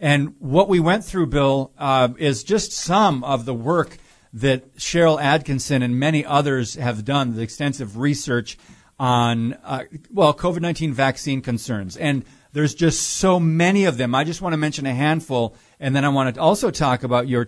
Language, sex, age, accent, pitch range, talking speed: English, male, 40-59, American, 125-155 Hz, 180 wpm